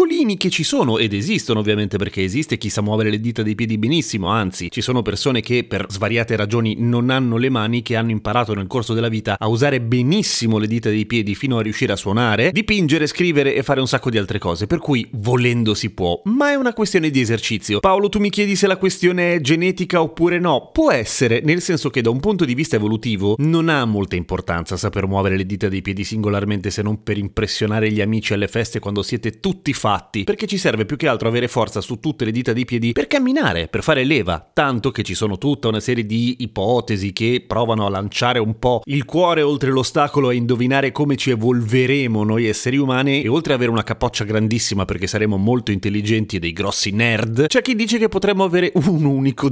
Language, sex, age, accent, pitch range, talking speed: Italian, male, 30-49, native, 105-150 Hz, 220 wpm